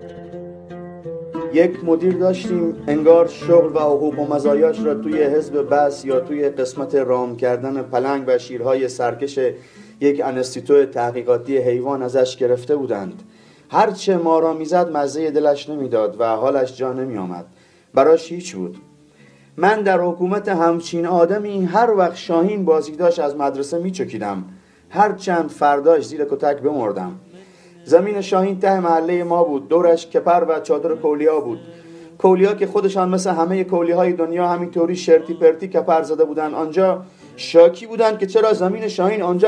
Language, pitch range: Persian, 145-185 Hz